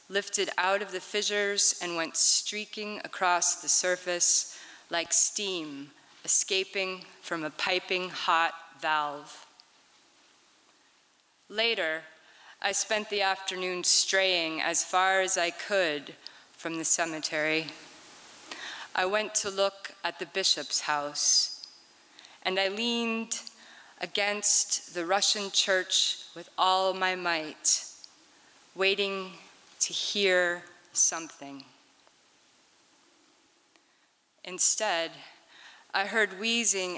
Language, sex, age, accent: English, female, 30-49, American